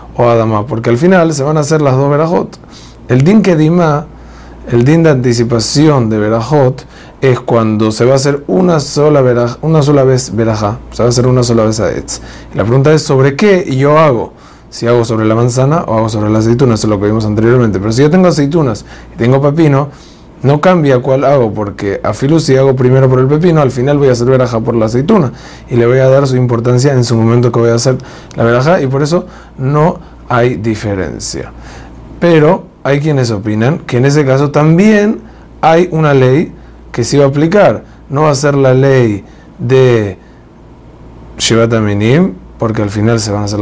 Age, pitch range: 30-49, 115-145 Hz